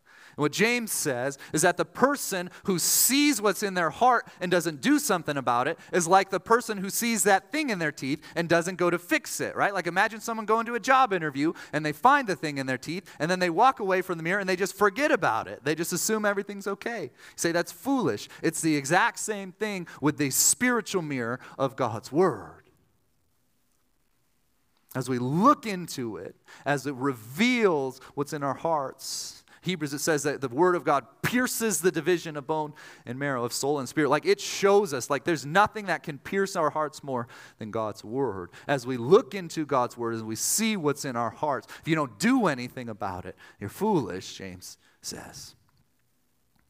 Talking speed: 205 wpm